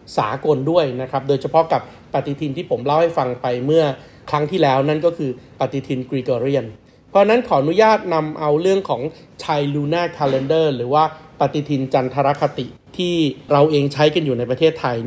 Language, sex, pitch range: Thai, male, 130-155 Hz